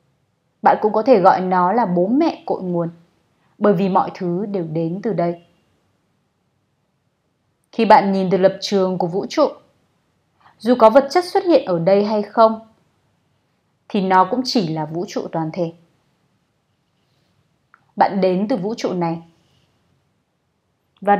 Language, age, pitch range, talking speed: Vietnamese, 20-39, 175-225 Hz, 155 wpm